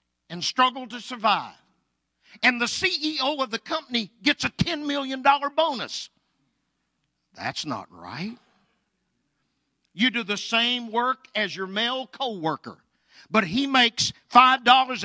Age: 50-69